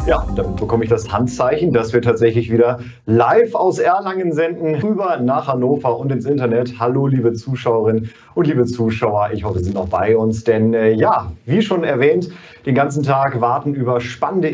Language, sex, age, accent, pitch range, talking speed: German, male, 30-49, German, 115-155 Hz, 185 wpm